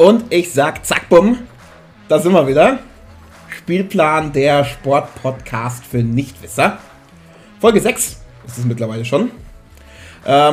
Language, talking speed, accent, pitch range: German, 120 wpm, German, 125-160 Hz